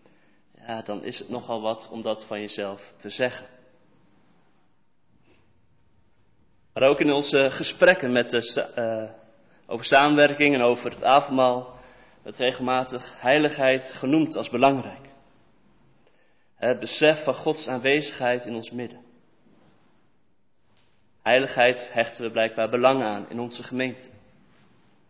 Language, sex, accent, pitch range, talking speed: Dutch, male, Dutch, 115-140 Hz, 115 wpm